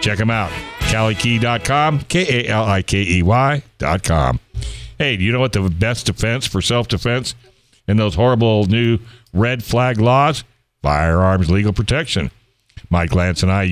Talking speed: 125 wpm